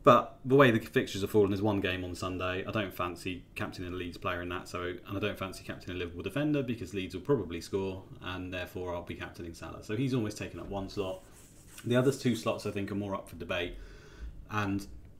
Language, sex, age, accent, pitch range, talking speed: English, male, 30-49, British, 95-115 Hz, 235 wpm